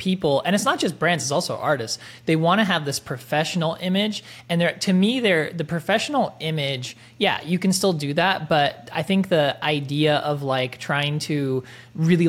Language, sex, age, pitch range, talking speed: English, male, 20-39, 130-165 Hz, 195 wpm